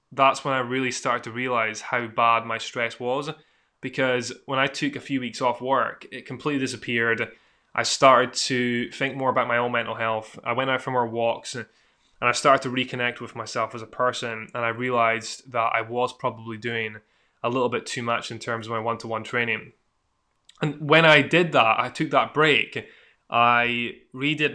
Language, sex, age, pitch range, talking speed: English, male, 10-29, 115-130 Hz, 195 wpm